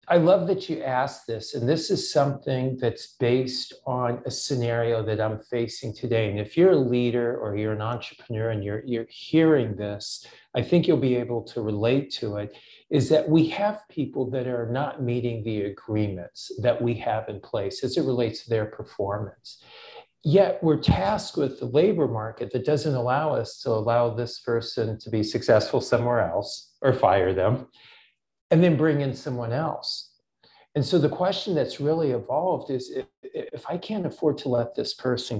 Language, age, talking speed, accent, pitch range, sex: English, 50-69, 185 wpm, American, 115-155 Hz, male